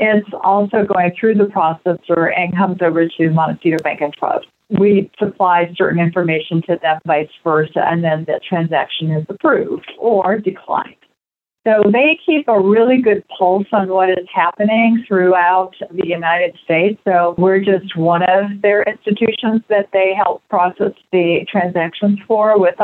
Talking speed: 160 wpm